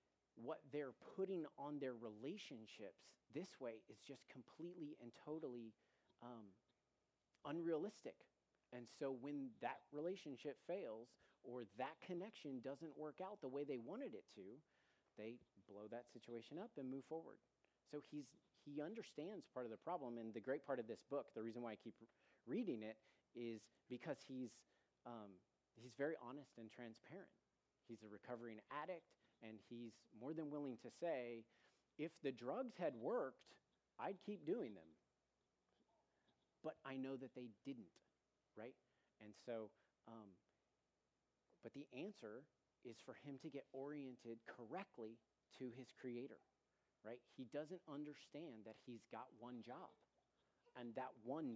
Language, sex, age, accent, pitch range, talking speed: English, male, 40-59, American, 115-150 Hz, 150 wpm